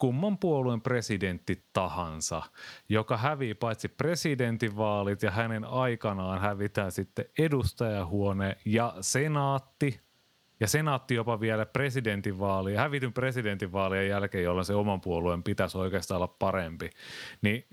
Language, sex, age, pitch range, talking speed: Finnish, male, 30-49, 100-140 Hz, 110 wpm